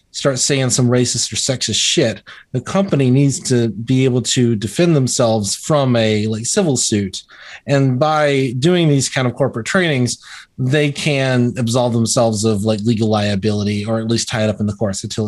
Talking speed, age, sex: 185 wpm, 30-49, male